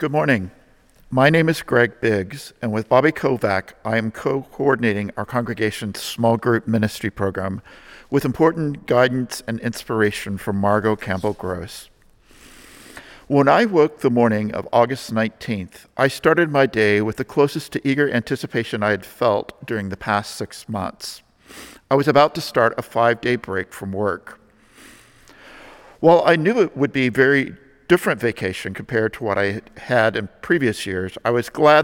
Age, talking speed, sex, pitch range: 50-69, 160 wpm, male, 105-135 Hz